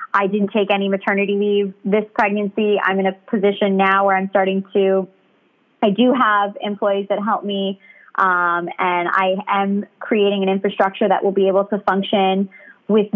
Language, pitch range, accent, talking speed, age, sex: English, 190-210 Hz, American, 175 wpm, 20-39, female